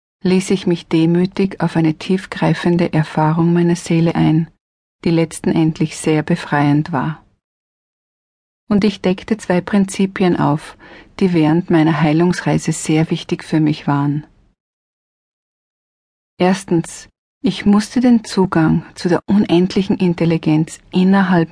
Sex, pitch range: female, 160-190 Hz